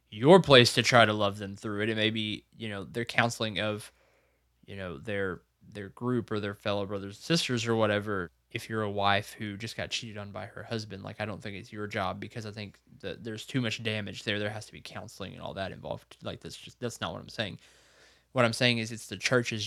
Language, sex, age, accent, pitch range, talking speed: English, male, 20-39, American, 100-115 Hz, 250 wpm